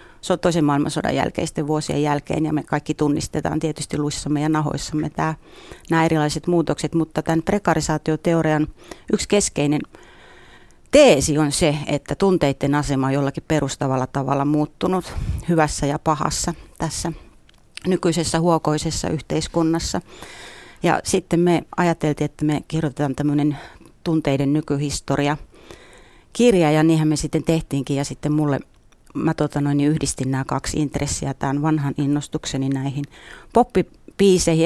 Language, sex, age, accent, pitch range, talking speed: Finnish, female, 30-49, native, 145-165 Hz, 125 wpm